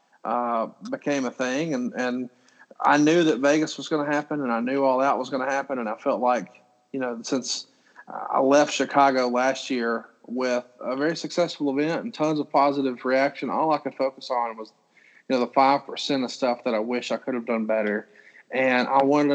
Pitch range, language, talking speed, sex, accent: 120-140 Hz, English, 215 wpm, male, American